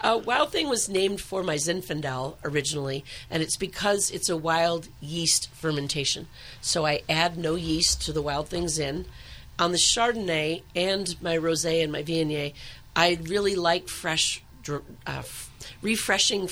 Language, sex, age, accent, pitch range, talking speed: English, female, 40-59, American, 145-170 Hz, 155 wpm